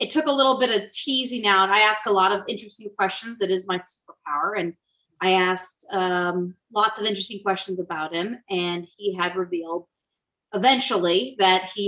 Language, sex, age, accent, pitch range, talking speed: English, female, 30-49, American, 185-230 Hz, 180 wpm